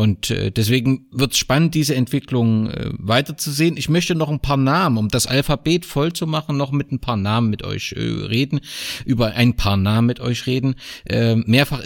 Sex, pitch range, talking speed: male, 110-135 Hz, 180 wpm